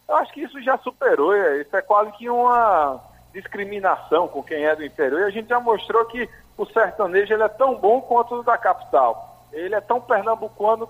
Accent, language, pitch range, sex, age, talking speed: Brazilian, Portuguese, 160-230 Hz, male, 50-69, 205 wpm